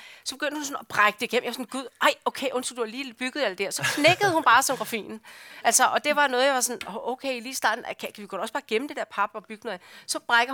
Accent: Danish